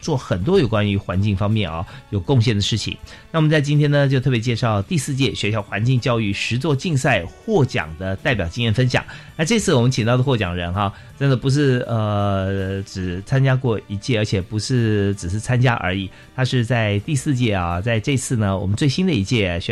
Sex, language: male, Chinese